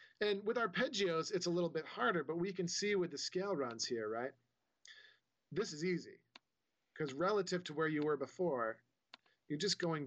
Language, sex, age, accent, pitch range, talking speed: English, male, 40-59, American, 135-185 Hz, 185 wpm